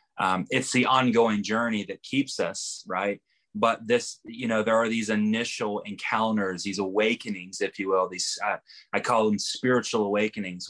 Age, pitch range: 20-39, 100-125 Hz